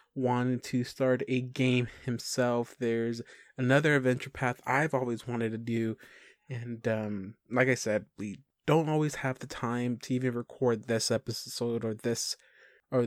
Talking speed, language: 155 wpm, English